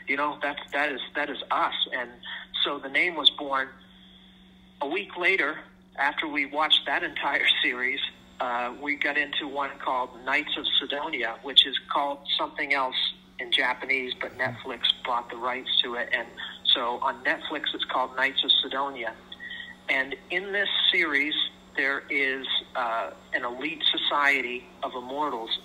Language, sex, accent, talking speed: English, male, American, 155 wpm